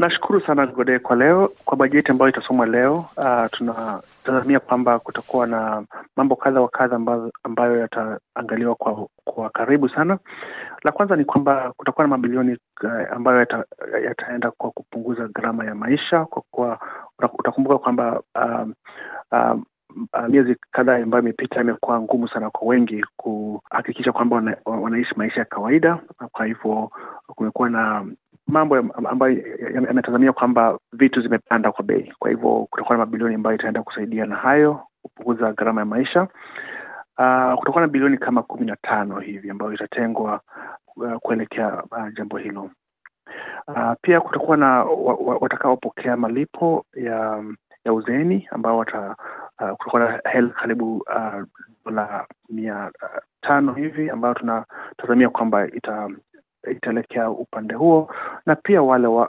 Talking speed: 140 wpm